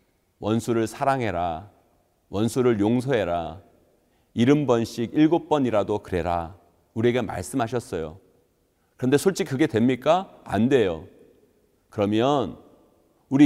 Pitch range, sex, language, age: 110-155 Hz, male, Korean, 40-59